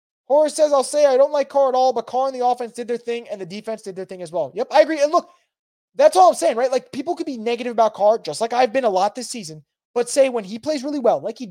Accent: American